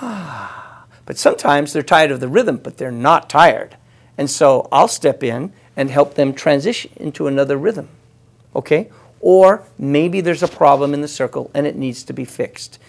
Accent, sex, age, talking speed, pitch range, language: American, male, 50-69, 175 wpm, 125-150 Hz, English